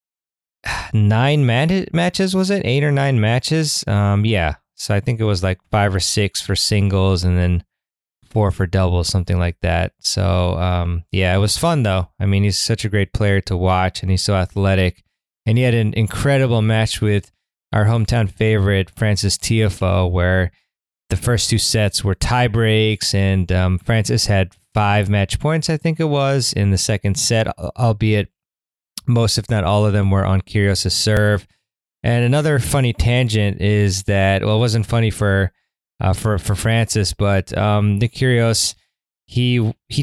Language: English